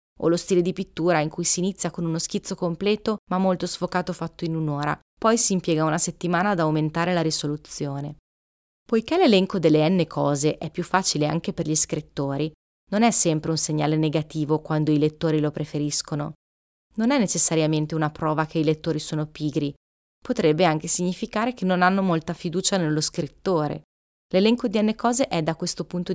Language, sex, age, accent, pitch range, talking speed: Italian, female, 30-49, native, 150-185 Hz, 180 wpm